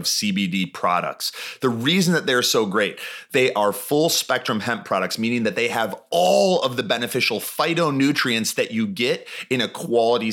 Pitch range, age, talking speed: 115-155 Hz, 30-49, 170 wpm